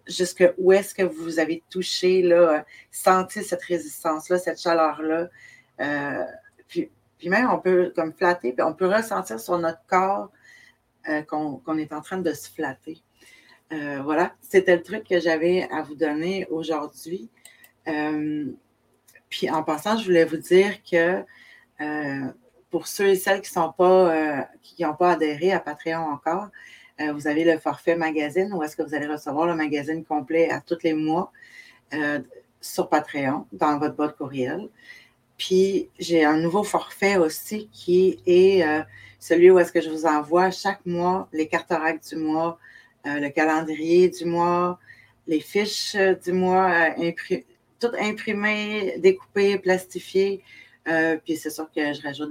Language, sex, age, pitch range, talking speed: French, female, 30-49, 155-185 Hz, 160 wpm